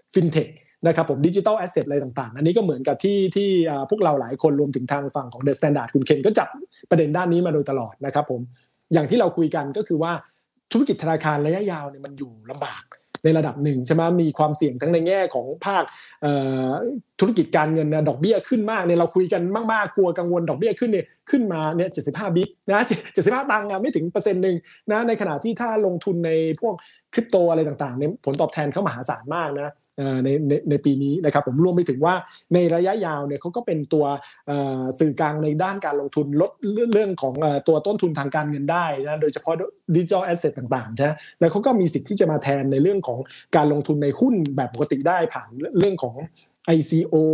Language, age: Thai, 20-39